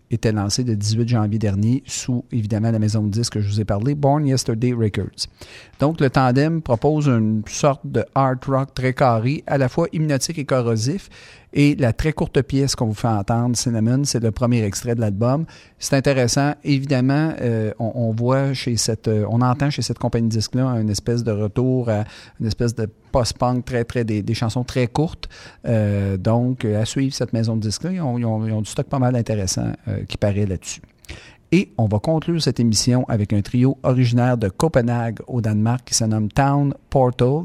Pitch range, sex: 110-130 Hz, male